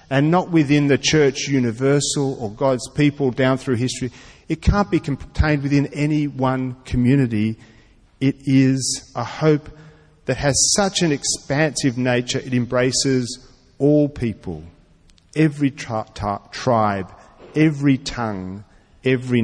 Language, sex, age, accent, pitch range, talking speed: English, male, 40-59, Australian, 110-145 Hz, 120 wpm